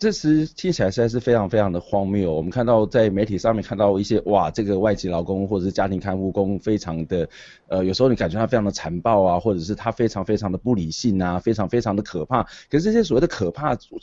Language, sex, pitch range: Chinese, male, 100-125 Hz